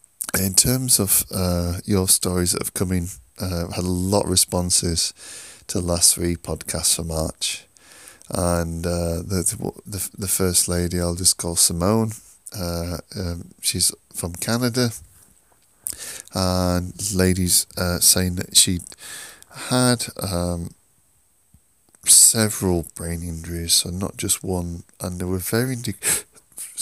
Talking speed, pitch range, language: 130 wpm, 85-100 Hz, English